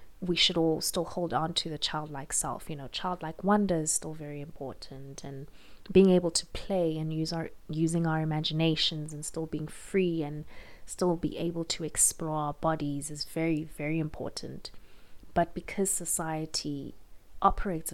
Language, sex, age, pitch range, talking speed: English, female, 20-39, 150-175 Hz, 165 wpm